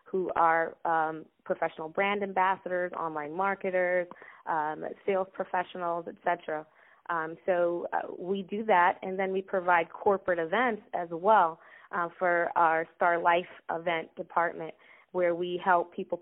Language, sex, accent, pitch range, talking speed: English, female, American, 170-200 Hz, 135 wpm